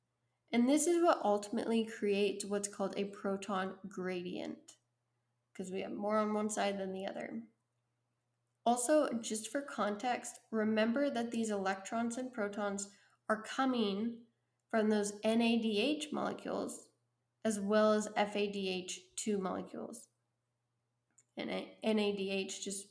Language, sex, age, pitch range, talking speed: English, female, 10-29, 195-230 Hz, 120 wpm